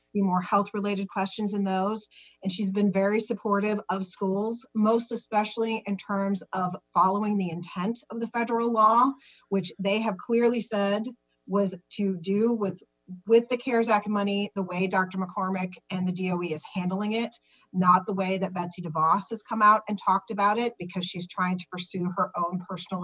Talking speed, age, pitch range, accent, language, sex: 185 wpm, 30-49, 185-215 Hz, American, English, female